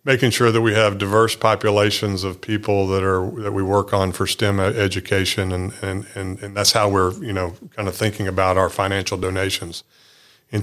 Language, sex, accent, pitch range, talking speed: English, male, American, 95-110 Hz, 200 wpm